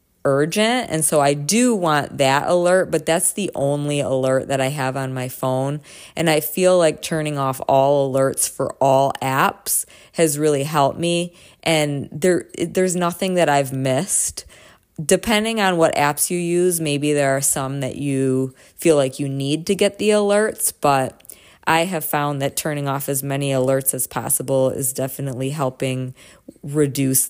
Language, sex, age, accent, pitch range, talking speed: English, female, 20-39, American, 135-175 Hz, 170 wpm